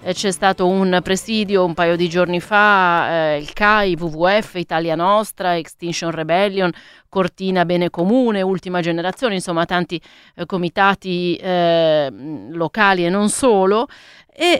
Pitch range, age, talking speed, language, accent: 165-205 Hz, 30-49, 130 wpm, Italian, native